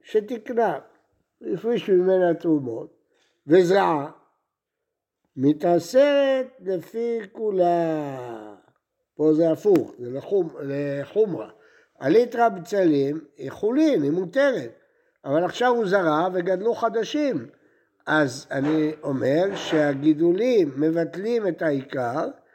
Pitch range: 155-250 Hz